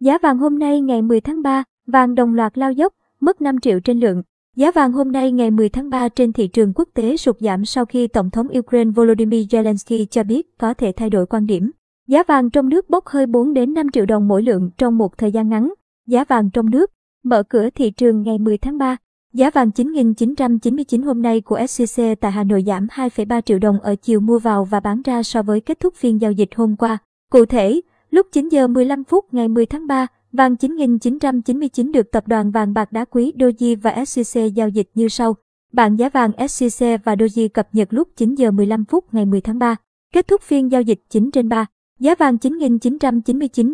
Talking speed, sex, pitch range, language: 220 wpm, male, 220-265 Hz, Vietnamese